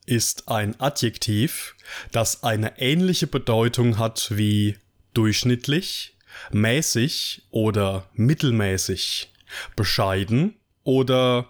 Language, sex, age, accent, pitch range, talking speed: German, male, 20-39, German, 105-130 Hz, 80 wpm